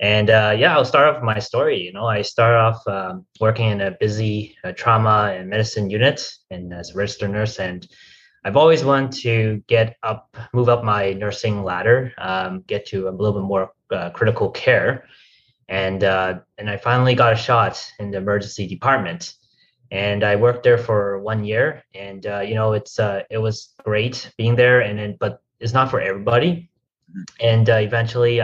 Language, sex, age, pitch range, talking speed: English, male, 20-39, 100-120 Hz, 190 wpm